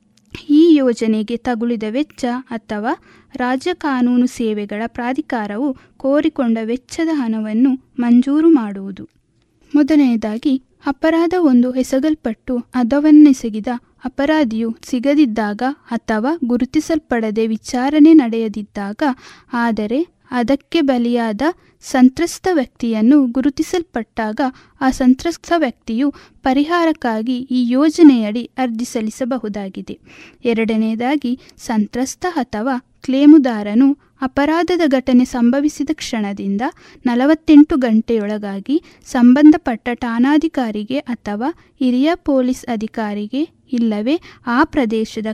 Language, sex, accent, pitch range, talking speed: Kannada, female, native, 230-290 Hz, 75 wpm